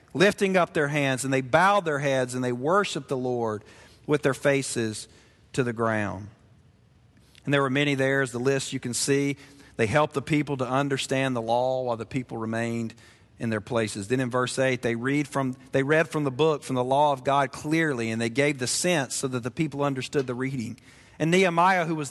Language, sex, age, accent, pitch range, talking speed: English, male, 40-59, American, 125-155 Hz, 215 wpm